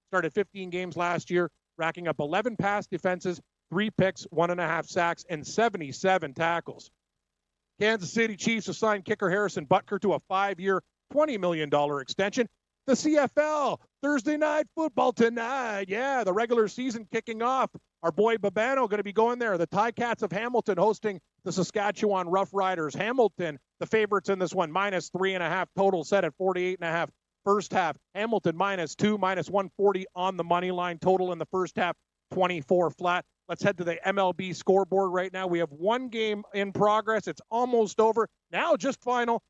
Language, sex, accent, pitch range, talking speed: English, male, American, 170-210 Hz, 170 wpm